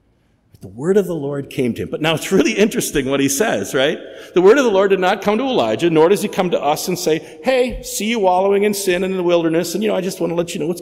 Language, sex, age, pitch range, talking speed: English, male, 50-69, 115-185 Hz, 305 wpm